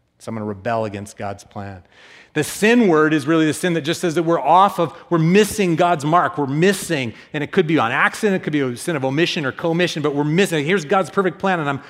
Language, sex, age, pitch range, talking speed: English, male, 40-59, 135-185 Hz, 265 wpm